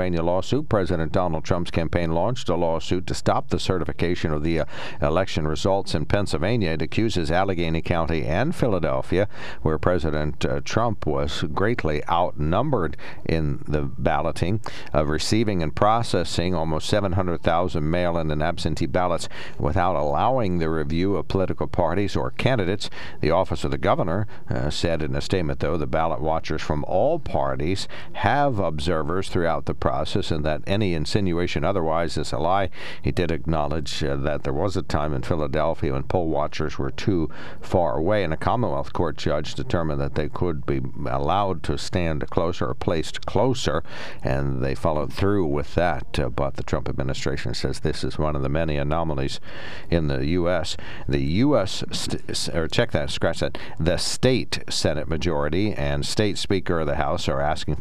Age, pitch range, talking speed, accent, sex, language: 60-79, 75-90 Hz, 165 wpm, American, male, English